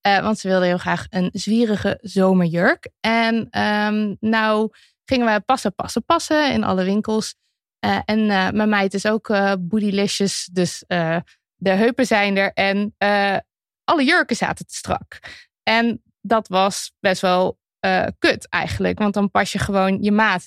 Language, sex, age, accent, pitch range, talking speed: Dutch, female, 20-39, Dutch, 195-235 Hz, 165 wpm